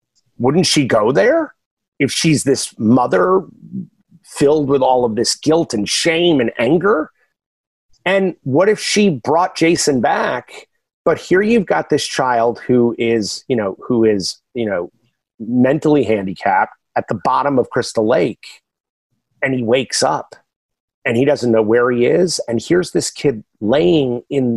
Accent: American